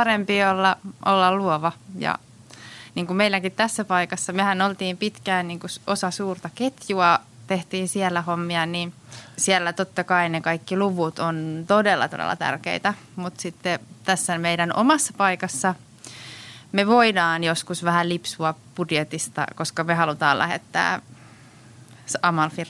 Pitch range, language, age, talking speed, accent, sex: 150-185 Hz, Finnish, 20-39, 130 wpm, native, female